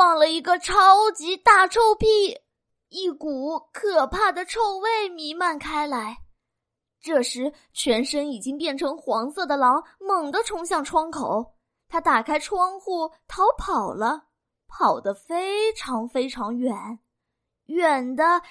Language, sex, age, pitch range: Chinese, female, 20-39, 255-355 Hz